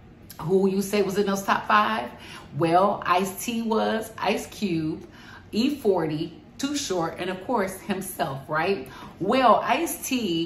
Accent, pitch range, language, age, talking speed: American, 165-205 Hz, English, 30-49, 130 wpm